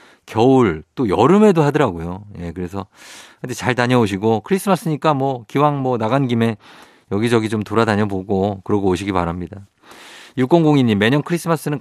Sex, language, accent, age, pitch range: male, Korean, native, 50-69, 100-130 Hz